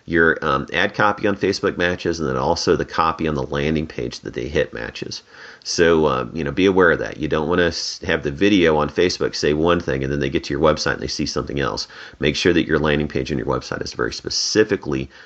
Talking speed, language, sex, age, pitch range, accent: 250 wpm, English, male, 40-59, 75-95 Hz, American